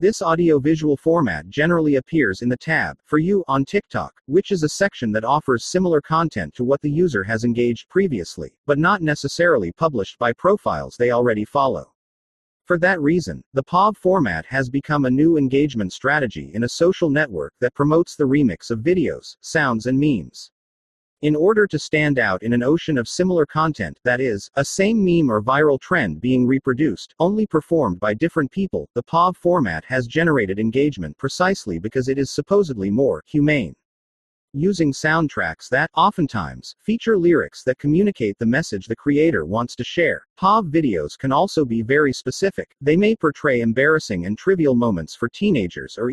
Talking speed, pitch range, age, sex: 170 wpm, 120-165 Hz, 40-59, male